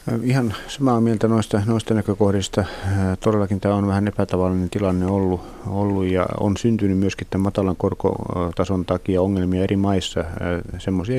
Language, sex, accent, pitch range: Finnish, male, native, 95-110 Hz